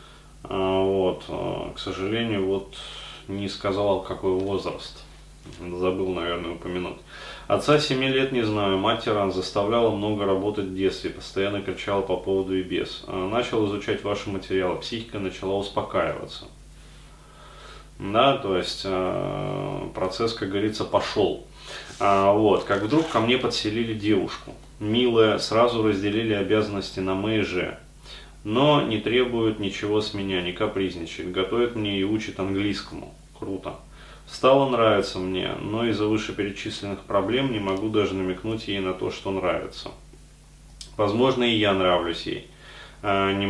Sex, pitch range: male, 95-110 Hz